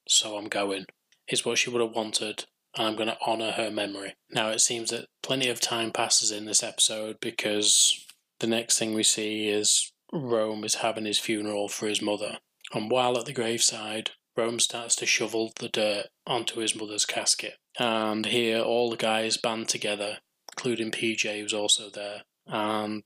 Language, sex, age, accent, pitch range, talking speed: English, male, 20-39, British, 105-115 Hz, 180 wpm